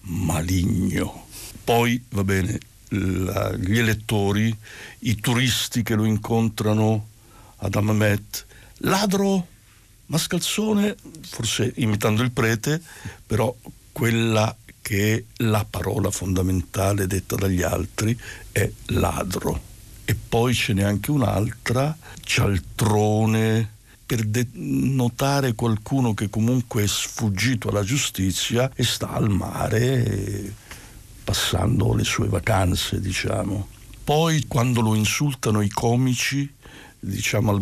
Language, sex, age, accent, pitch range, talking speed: Italian, male, 60-79, native, 100-125 Hz, 100 wpm